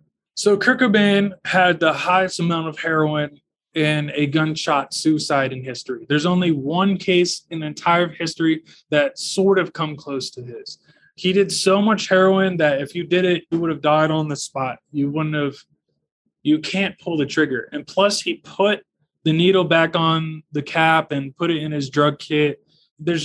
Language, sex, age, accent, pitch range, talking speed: English, male, 20-39, American, 150-185 Hz, 190 wpm